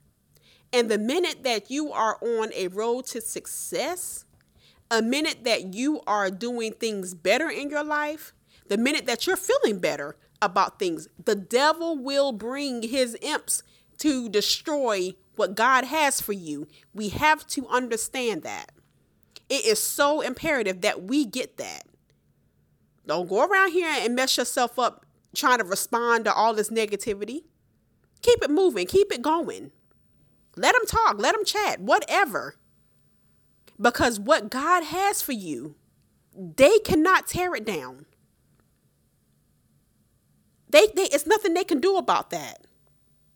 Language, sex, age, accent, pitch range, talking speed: English, female, 30-49, American, 235-345 Hz, 145 wpm